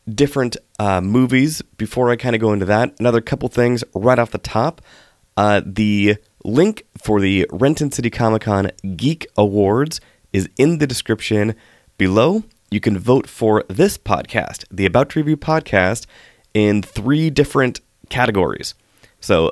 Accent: American